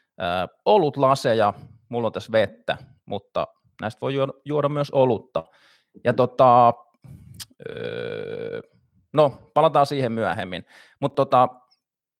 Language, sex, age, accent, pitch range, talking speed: Finnish, male, 30-49, native, 120-150 Hz, 100 wpm